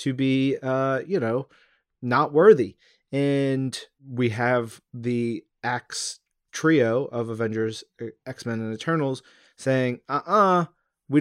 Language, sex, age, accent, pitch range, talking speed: English, male, 30-49, American, 115-150 Hz, 110 wpm